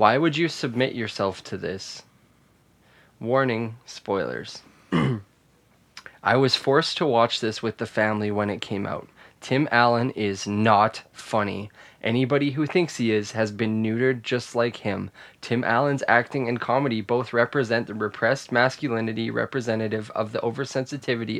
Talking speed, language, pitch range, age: 145 wpm, English, 110-135 Hz, 20-39